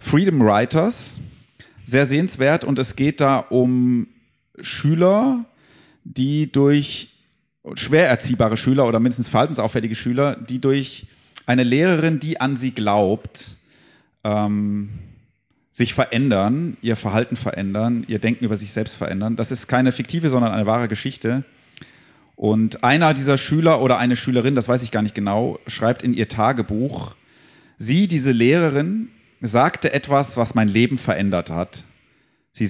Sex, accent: male, German